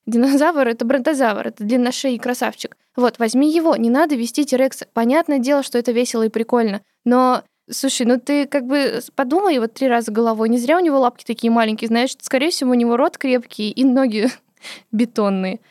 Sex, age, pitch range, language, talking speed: female, 20-39, 225-270 Hz, Russian, 190 wpm